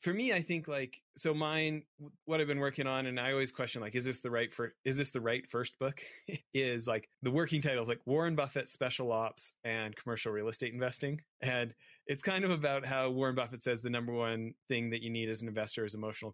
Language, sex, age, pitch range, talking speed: English, male, 30-49, 110-135 Hz, 235 wpm